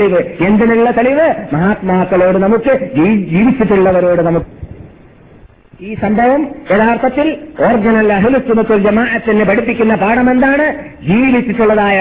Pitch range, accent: 185-235 Hz, native